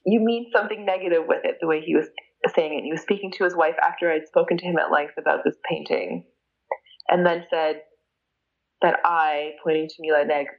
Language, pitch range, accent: English, 165-230 Hz, American